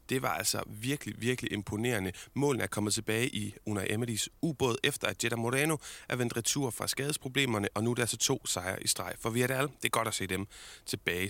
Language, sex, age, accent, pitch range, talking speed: Danish, male, 30-49, native, 100-125 Hz, 235 wpm